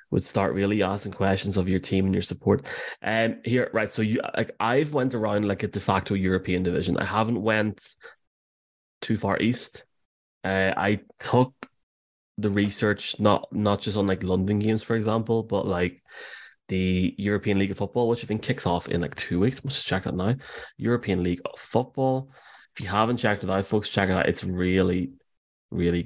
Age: 20-39